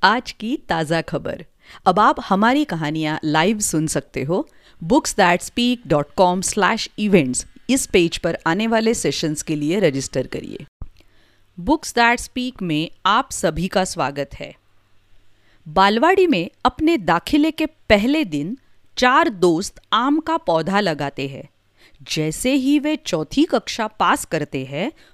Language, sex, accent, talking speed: Hindi, female, native, 130 wpm